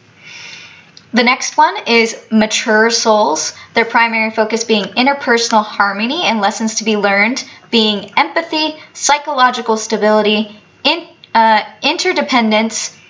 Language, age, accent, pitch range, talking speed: English, 10-29, American, 210-250 Hz, 110 wpm